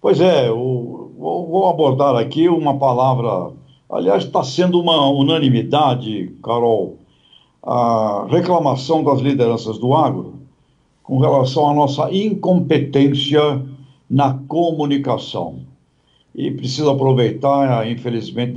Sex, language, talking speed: male, Portuguese, 100 wpm